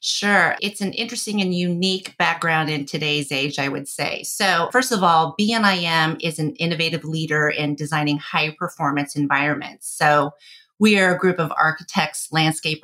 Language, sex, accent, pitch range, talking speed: English, female, American, 150-175 Hz, 160 wpm